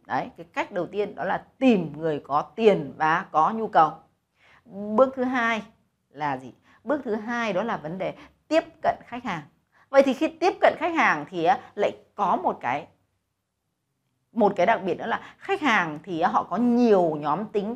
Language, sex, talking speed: Vietnamese, female, 190 wpm